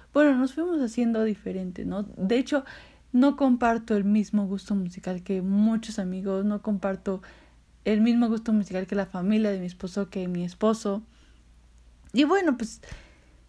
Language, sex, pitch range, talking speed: Spanish, female, 195-240 Hz, 155 wpm